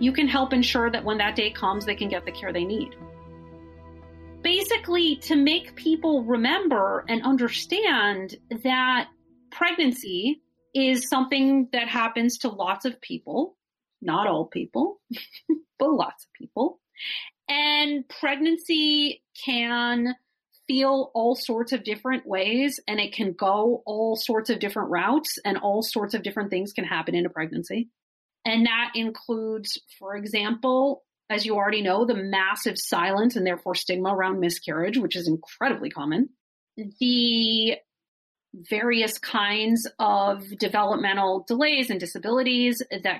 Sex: female